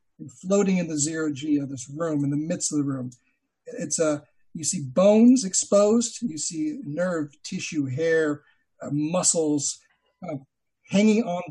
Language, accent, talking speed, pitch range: English, American, 155 wpm, 145-190 Hz